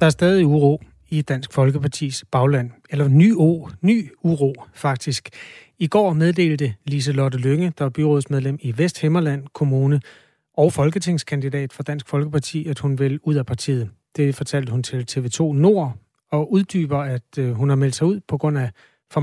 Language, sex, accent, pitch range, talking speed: Danish, male, native, 135-155 Hz, 170 wpm